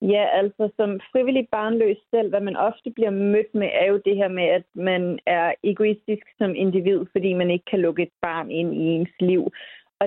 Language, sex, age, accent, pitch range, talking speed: Danish, female, 30-49, native, 185-225 Hz, 210 wpm